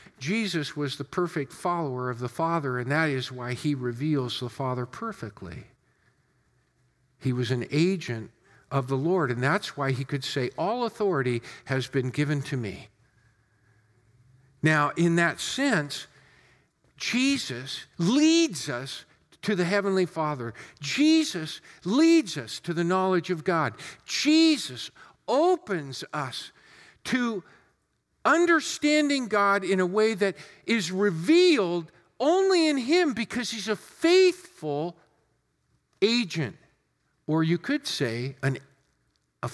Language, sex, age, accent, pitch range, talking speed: English, male, 50-69, American, 135-215 Hz, 125 wpm